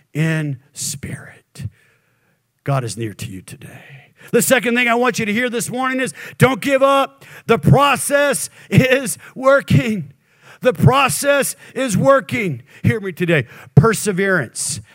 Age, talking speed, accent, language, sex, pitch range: 50-69, 135 wpm, American, English, male, 155-200 Hz